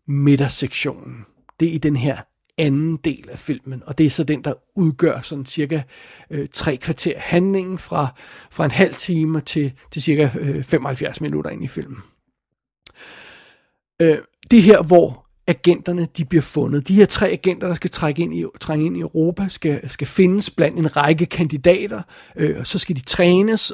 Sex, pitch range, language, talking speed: male, 145-180 Hz, Danish, 175 wpm